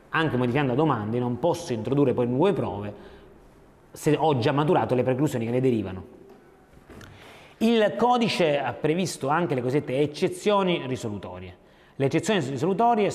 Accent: native